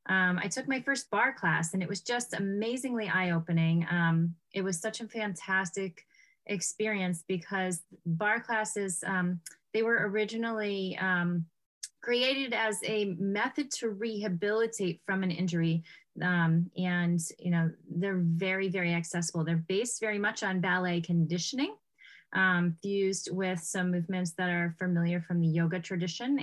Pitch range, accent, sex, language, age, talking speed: 170-205 Hz, American, female, English, 30-49, 145 wpm